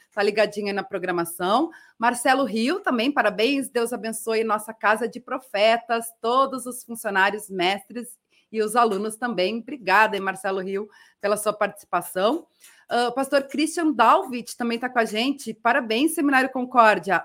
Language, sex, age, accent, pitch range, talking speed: Portuguese, female, 30-49, Brazilian, 215-270 Hz, 145 wpm